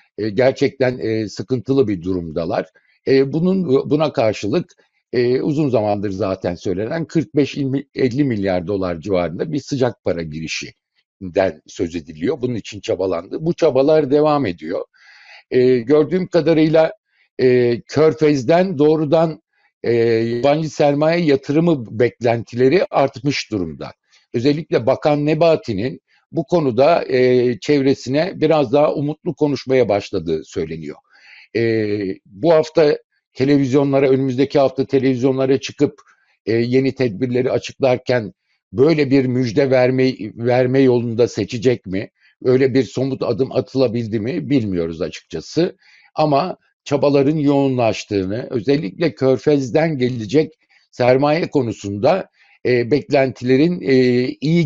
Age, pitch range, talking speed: 60-79, 120-150 Hz, 100 wpm